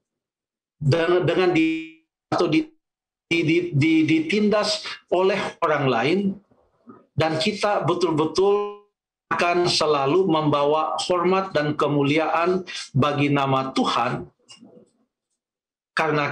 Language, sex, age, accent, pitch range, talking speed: Indonesian, male, 50-69, native, 135-180 Hz, 85 wpm